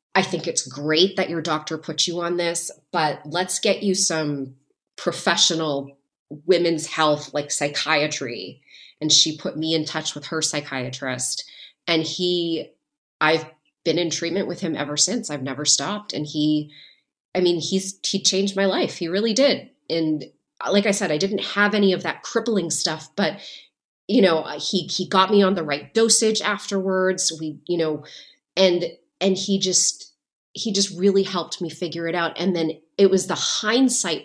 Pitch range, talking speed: 155-195 Hz, 175 wpm